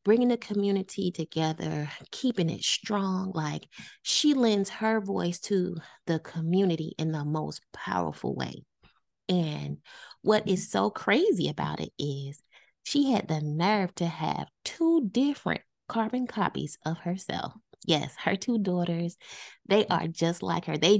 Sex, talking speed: female, 145 wpm